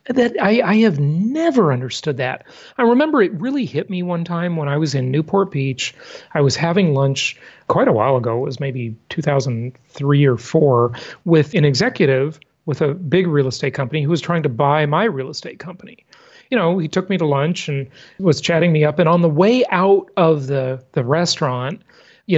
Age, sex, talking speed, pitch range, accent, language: 40-59, male, 200 wpm, 140-190 Hz, American, English